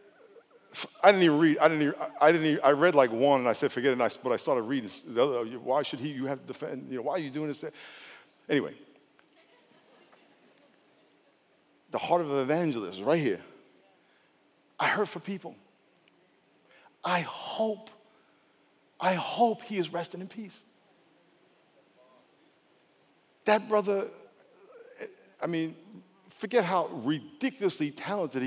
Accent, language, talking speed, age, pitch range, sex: American, English, 140 wpm, 50-69, 150-220 Hz, male